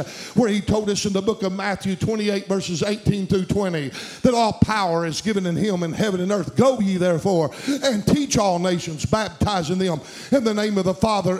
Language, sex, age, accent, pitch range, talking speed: English, male, 50-69, American, 185-220 Hz, 210 wpm